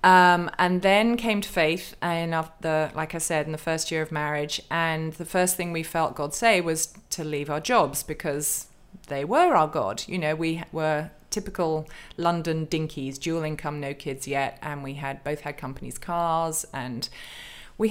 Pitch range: 150-175 Hz